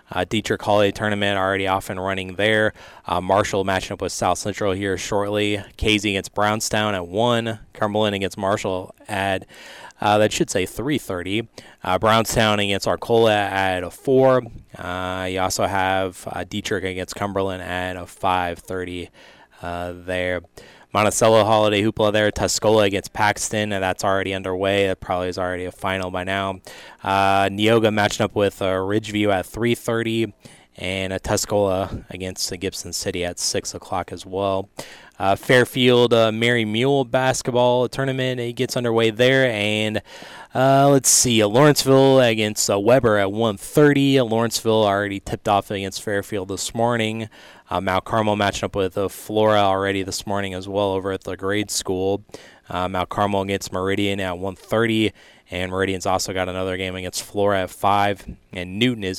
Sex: male